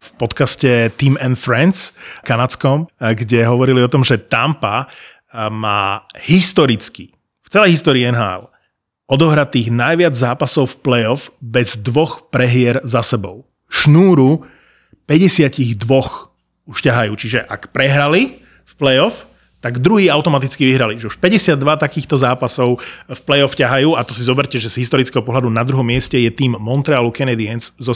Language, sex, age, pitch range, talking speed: Slovak, male, 30-49, 120-140 Hz, 140 wpm